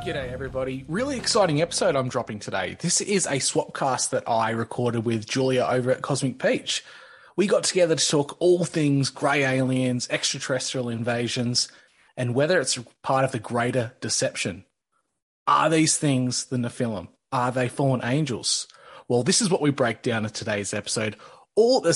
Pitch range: 120-150 Hz